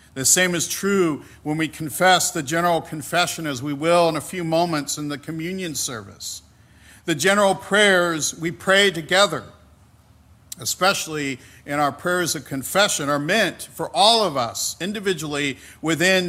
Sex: male